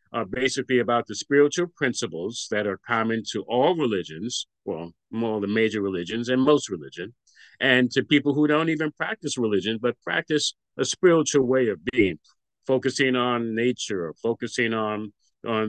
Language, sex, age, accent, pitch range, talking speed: English, male, 50-69, American, 110-140 Hz, 165 wpm